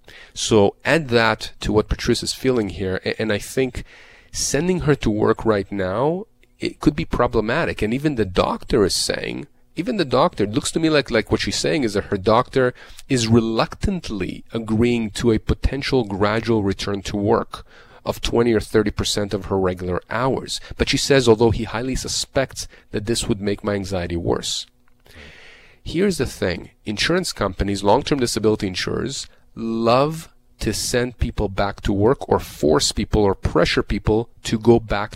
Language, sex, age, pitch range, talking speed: English, male, 30-49, 105-130 Hz, 170 wpm